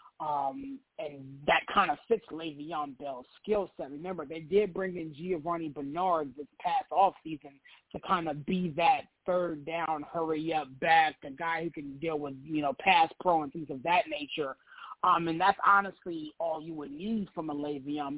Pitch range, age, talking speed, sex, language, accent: 150-185 Hz, 30-49, 185 wpm, male, English, American